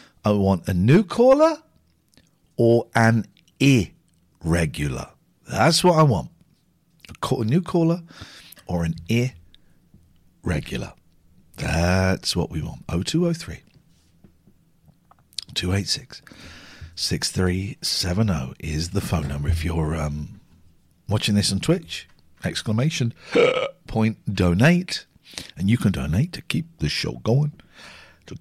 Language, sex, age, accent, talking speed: English, male, 50-69, British, 100 wpm